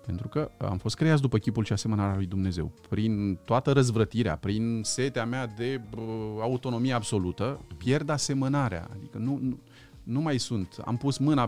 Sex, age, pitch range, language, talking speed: male, 30-49, 115-160 Hz, Romanian, 160 wpm